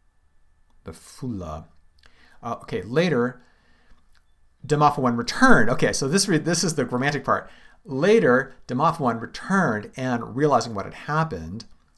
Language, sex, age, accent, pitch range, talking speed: English, male, 50-69, American, 80-125 Hz, 120 wpm